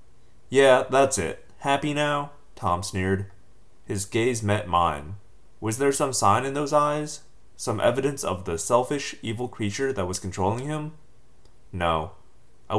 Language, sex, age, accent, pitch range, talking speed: English, male, 30-49, American, 95-120 Hz, 145 wpm